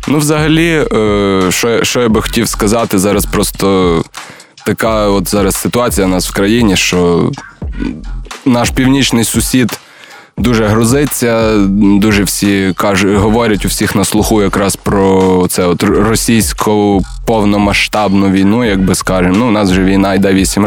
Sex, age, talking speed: male, 20-39, 130 wpm